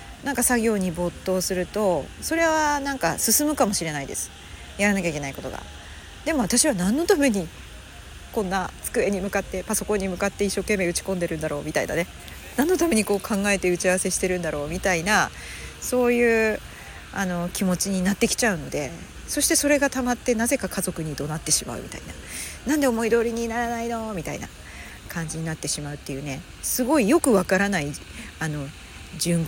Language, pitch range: Japanese, 160-255 Hz